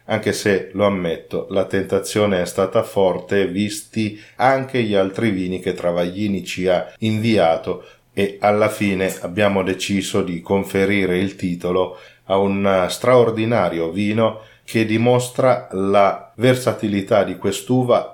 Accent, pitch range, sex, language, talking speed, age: native, 95-110 Hz, male, Italian, 125 wpm, 40-59